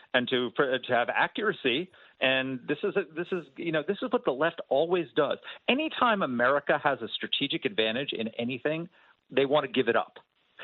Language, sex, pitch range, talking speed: English, male, 140-195 Hz, 190 wpm